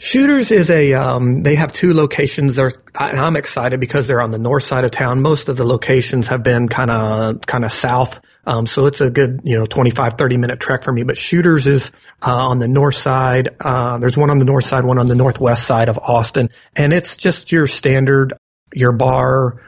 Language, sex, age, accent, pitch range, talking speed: English, male, 40-59, American, 120-135 Hz, 225 wpm